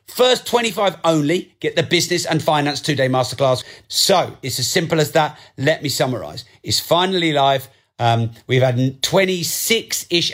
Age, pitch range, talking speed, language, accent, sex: 40-59, 125-160 Hz, 150 wpm, English, British, male